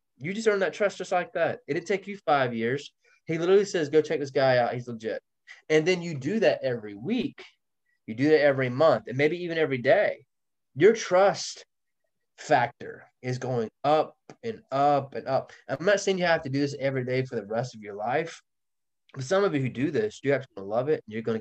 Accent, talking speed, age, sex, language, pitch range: American, 225 wpm, 20-39, male, English, 120-165 Hz